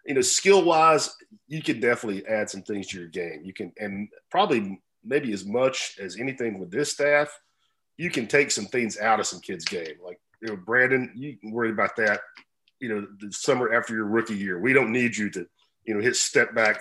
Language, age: English, 40-59